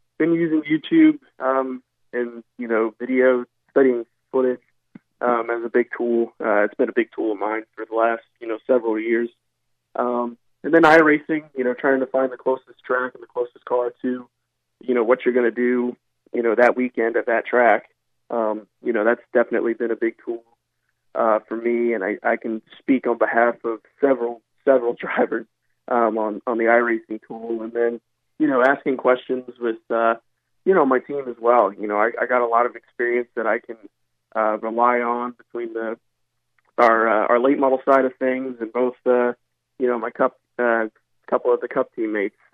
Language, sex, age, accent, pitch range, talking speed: English, male, 20-39, American, 115-125 Hz, 200 wpm